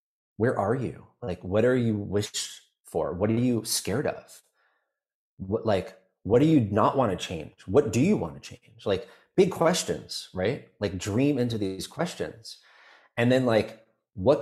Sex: male